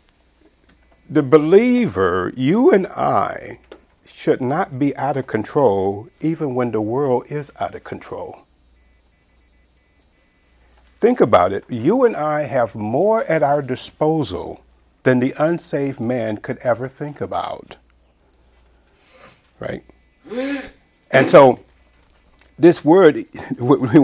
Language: English